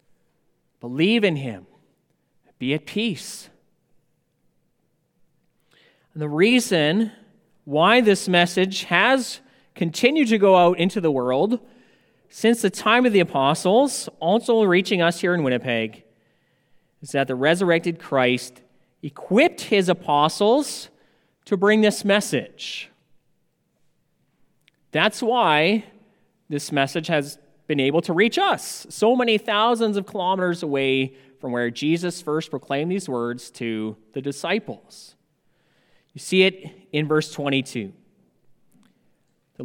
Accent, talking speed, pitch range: American, 115 wpm, 135-200 Hz